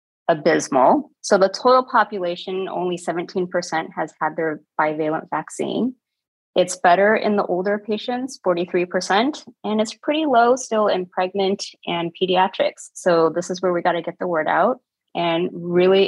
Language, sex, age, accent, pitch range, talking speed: English, female, 30-49, American, 165-215 Hz, 155 wpm